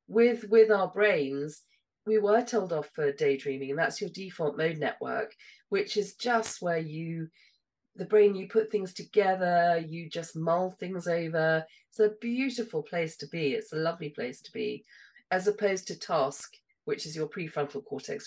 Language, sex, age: English, female, 40-59